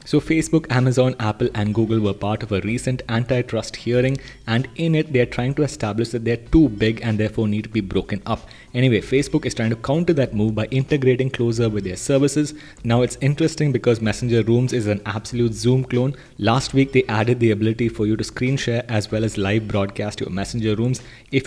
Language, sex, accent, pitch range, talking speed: English, male, Indian, 110-130 Hz, 210 wpm